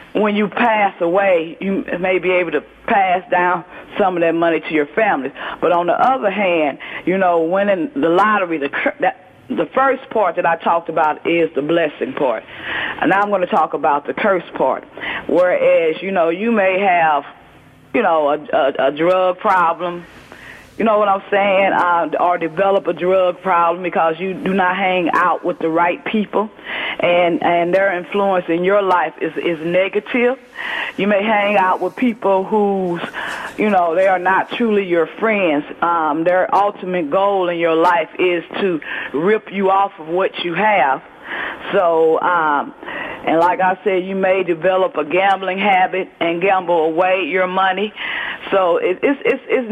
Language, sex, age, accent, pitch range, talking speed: English, female, 40-59, American, 175-200 Hz, 175 wpm